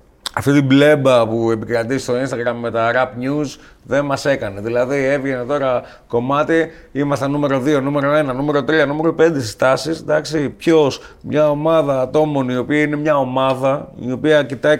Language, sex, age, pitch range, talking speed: Greek, male, 30-49, 125-155 Hz, 165 wpm